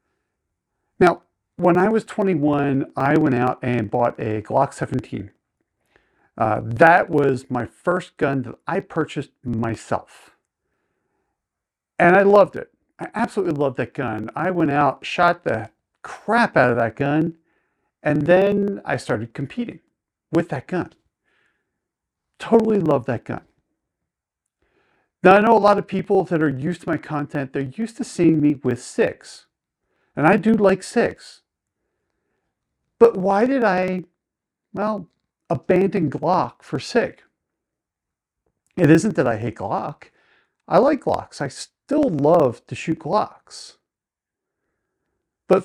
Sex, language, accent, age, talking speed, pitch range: male, English, American, 50-69, 135 wpm, 135-190 Hz